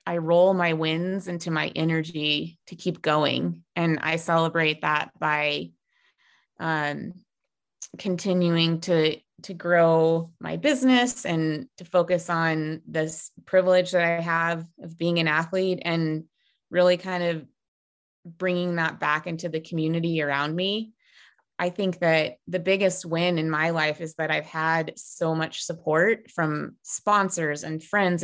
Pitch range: 160-180 Hz